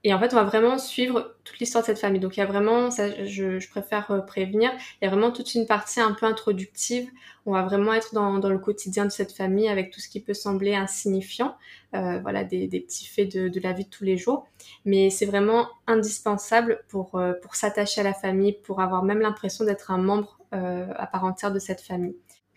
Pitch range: 185-220 Hz